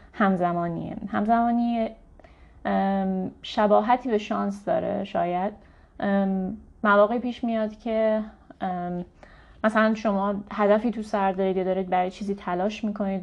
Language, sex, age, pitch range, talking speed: Persian, female, 30-49, 185-220 Hz, 105 wpm